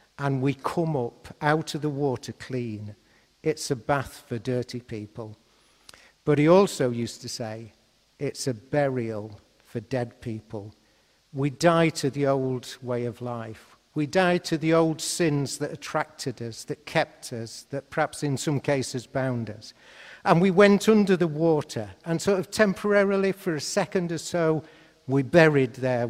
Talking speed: 165 wpm